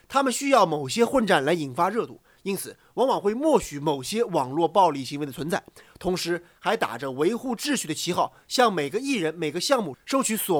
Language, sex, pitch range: Chinese, male, 165-235 Hz